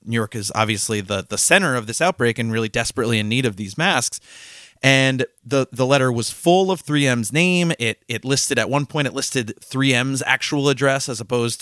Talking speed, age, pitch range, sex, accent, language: 205 wpm, 30-49, 110-130 Hz, male, American, English